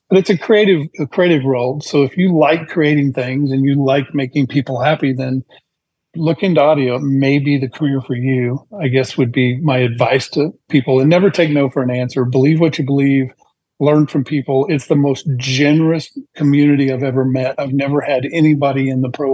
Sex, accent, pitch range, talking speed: male, American, 130-150 Hz, 200 wpm